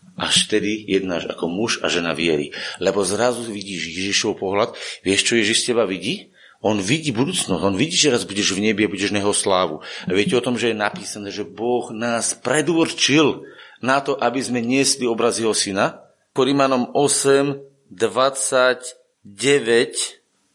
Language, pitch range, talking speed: Slovak, 120-170 Hz, 160 wpm